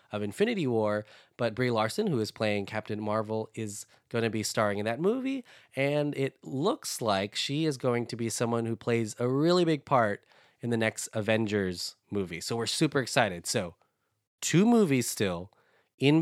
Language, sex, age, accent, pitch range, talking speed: English, male, 20-39, American, 110-135 Hz, 180 wpm